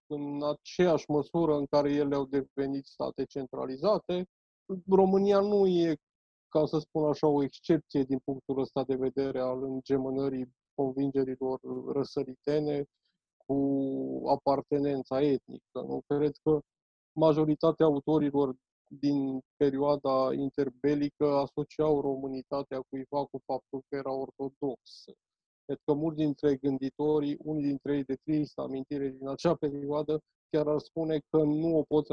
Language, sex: Romanian, male